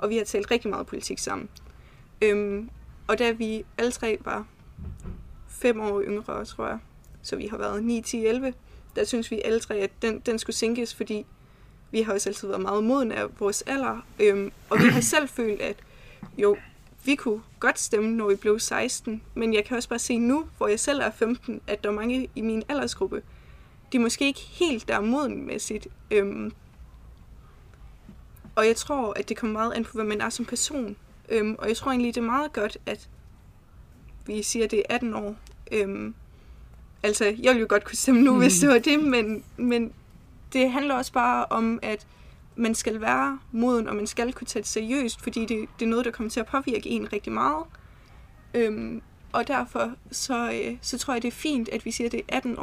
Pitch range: 215-250 Hz